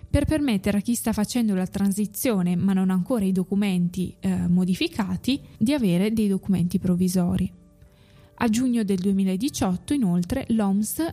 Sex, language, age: female, Italian, 20-39